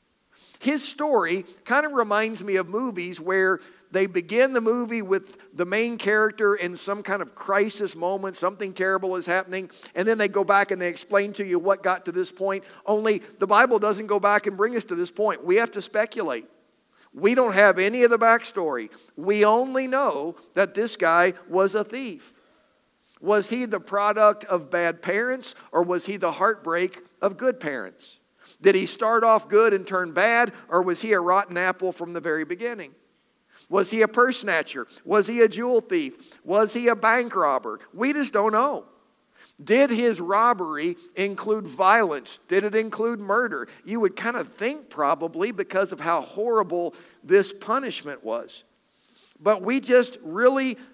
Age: 50-69